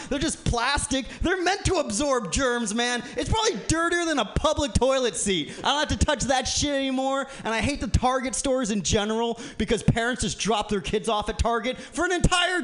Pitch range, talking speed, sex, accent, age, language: 235-290 Hz, 215 wpm, male, American, 30-49, English